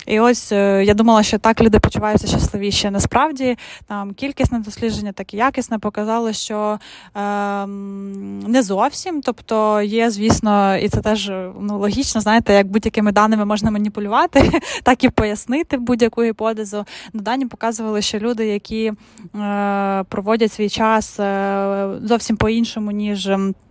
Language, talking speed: Ukrainian, 130 wpm